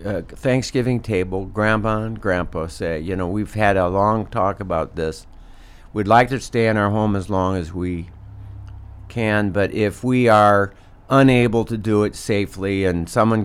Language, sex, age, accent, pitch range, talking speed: English, male, 60-79, American, 95-120 Hz, 175 wpm